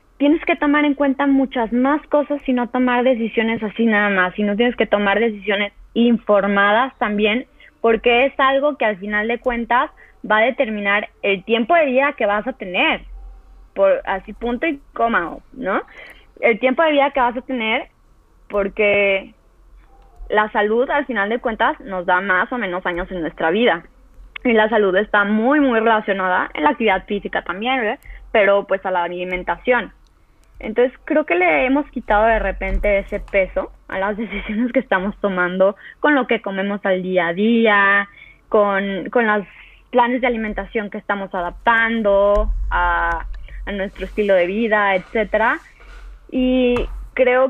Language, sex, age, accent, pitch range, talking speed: Spanish, female, 20-39, Mexican, 200-255 Hz, 170 wpm